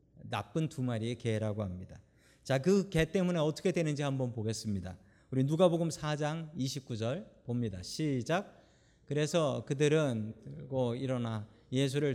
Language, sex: Korean, male